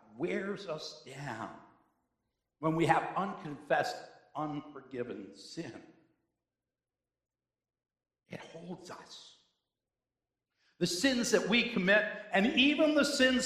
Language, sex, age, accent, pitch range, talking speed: English, male, 60-79, American, 140-210 Hz, 95 wpm